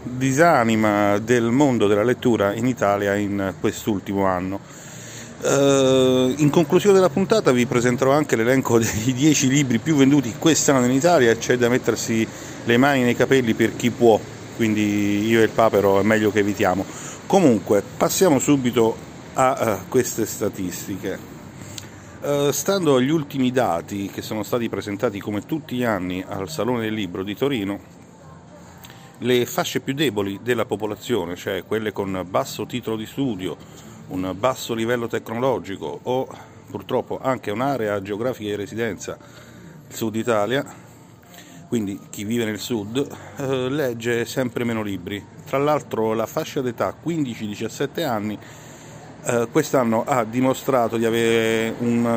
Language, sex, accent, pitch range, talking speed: Italian, male, native, 105-135 Hz, 145 wpm